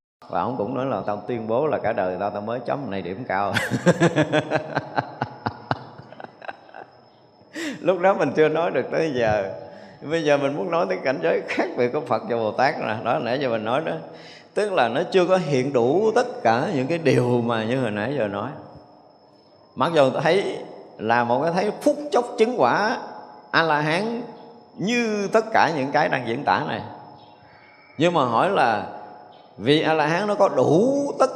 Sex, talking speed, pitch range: male, 195 wpm, 120-195 Hz